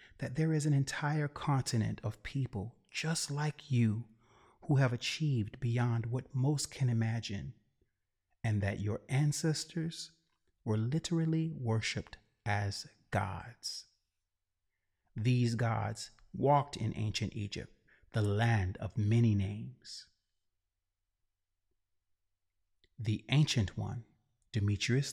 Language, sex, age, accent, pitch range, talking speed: English, male, 30-49, American, 105-135 Hz, 105 wpm